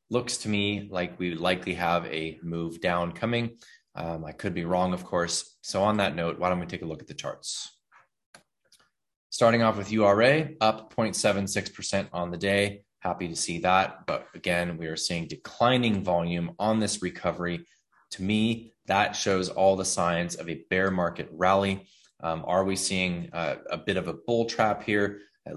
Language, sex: English, male